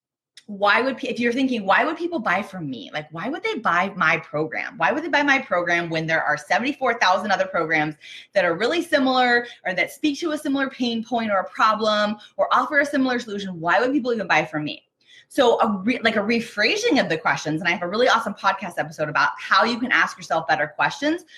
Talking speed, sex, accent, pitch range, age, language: 230 wpm, female, American, 175-255 Hz, 20-39, English